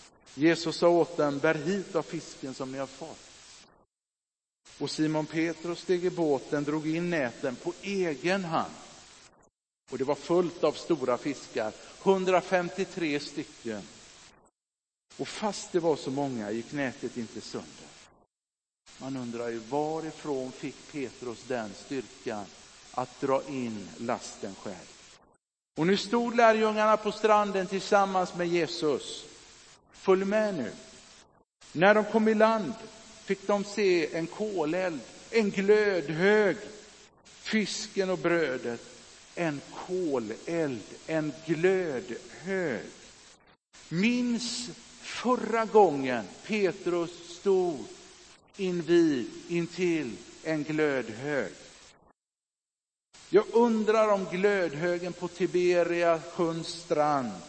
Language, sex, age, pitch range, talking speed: Swedish, male, 50-69, 150-205 Hz, 110 wpm